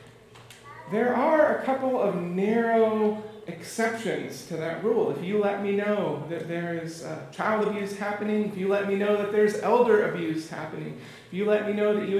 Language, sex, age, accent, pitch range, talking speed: English, male, 40-59, American, 170-210 Hz, 190 wpm